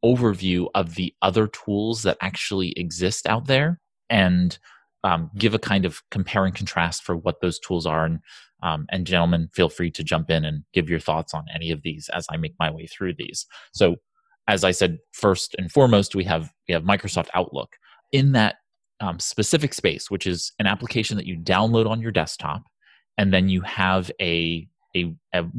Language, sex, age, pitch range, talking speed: English, male, 30-49, 85-105 Hz, 195 wpm